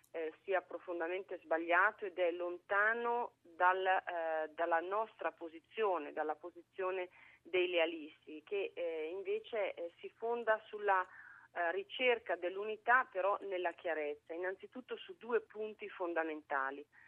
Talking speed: 120 wpm